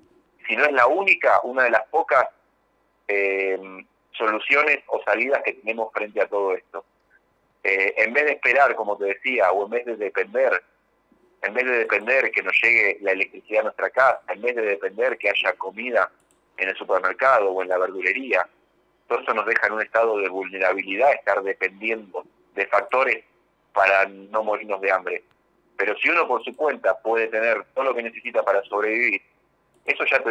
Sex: male